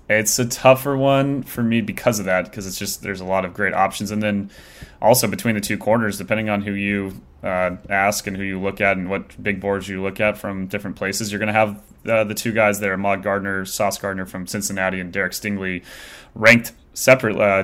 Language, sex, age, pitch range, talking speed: English, male, 20-39, 95-110 Hz, 230 wpm